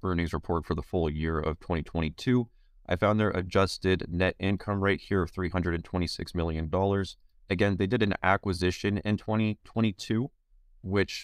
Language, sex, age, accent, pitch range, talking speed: English, male, 20-39, American, 80-95 Hz, 145 wpm